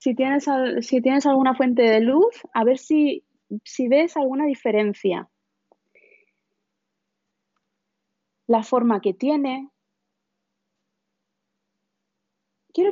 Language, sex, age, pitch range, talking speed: Spanish, female, 30-49, 220-295 Hz, 90 wpm